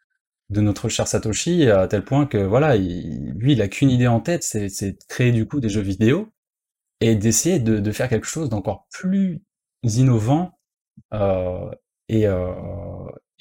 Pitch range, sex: 100-140 Hz, male